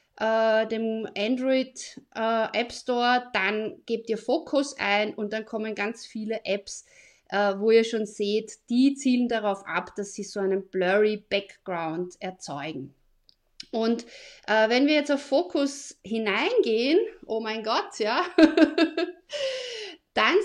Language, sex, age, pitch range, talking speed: German, female, 30-49, 215-275 Hz, 125 wpm